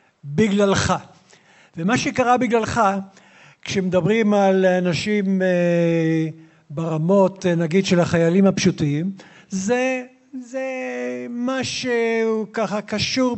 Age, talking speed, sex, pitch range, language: 60-79, 75 wpm, male, 175-220 Hz, Hebrew